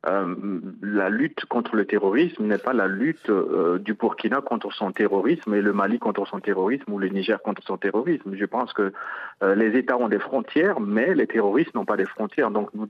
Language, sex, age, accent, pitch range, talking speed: French, male, 50-69, French, 110-180 Hz, 215 wpm